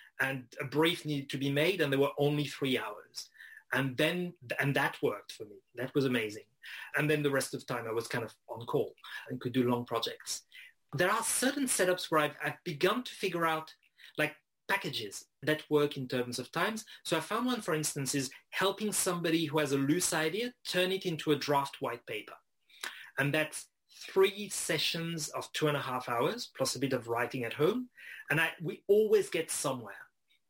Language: English